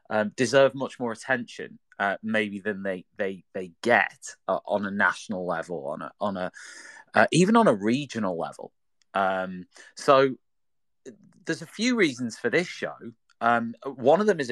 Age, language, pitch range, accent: 30-49, English, 105-135 Hz, British